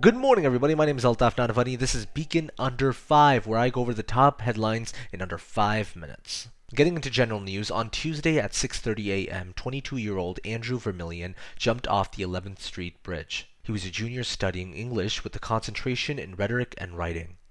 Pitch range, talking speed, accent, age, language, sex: 95-125 Hz, 185 wpm, American, 20-39, English, male